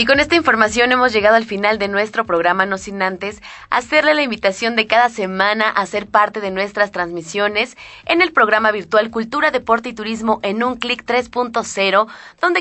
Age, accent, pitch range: 20-39, Mexican, 195-250 Hz